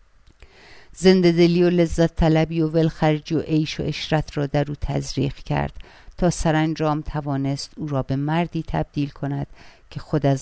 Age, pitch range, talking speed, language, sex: 50-69, 140-170 Hz, 155 wpm, English, female